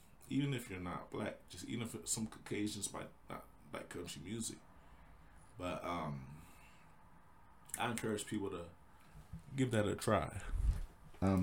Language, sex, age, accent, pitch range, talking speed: English, male, 20-39, American, 80-95 Hz, 135 wpm